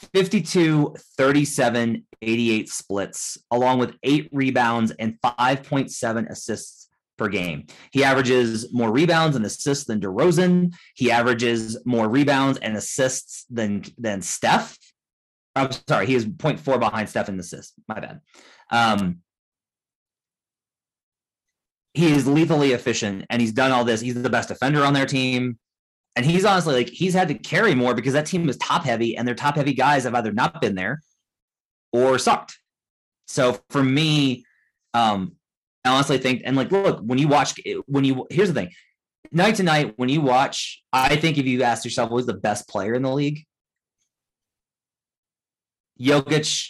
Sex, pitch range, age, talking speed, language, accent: male, 115-145 Hz, 30-49, 160 wpm, English, American